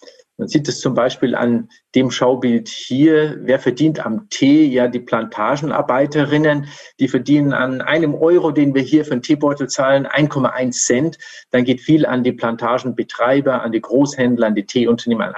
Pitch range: 120-150 Hz